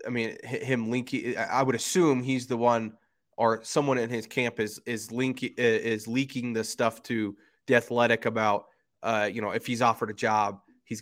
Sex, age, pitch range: male, 20-39, 110-125 Hz